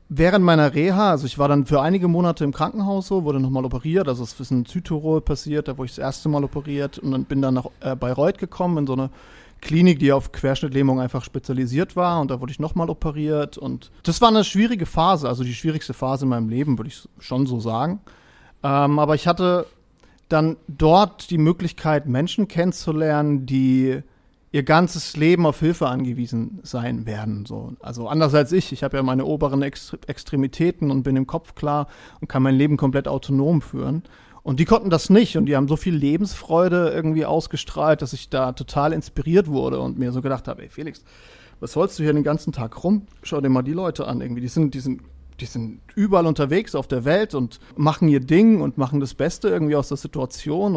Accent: German